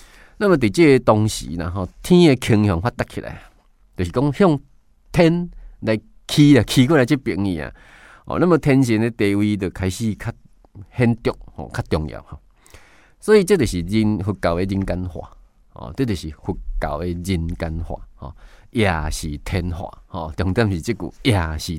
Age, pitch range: 20-39, 85-125 Hz